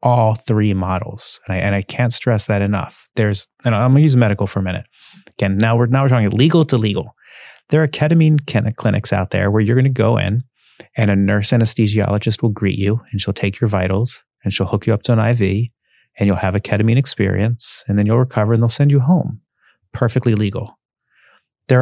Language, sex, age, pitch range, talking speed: English, male, 30-49, 105-120 Hz, 215 wpm